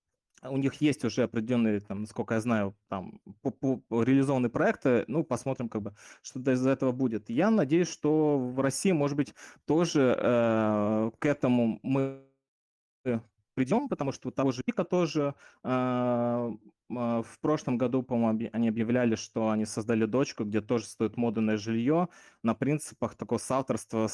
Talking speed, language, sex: 150 wpm, Russian, male